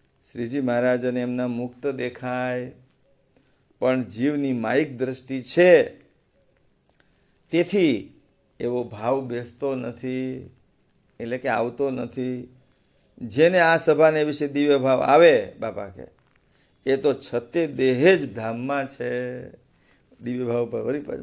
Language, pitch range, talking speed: English, 120-140 Hz, 110 wpm